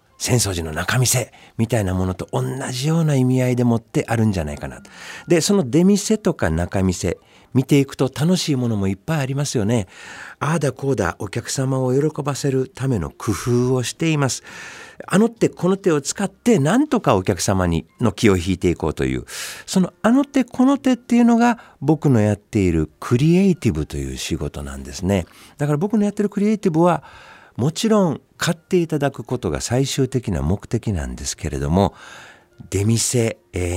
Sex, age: male, 50-69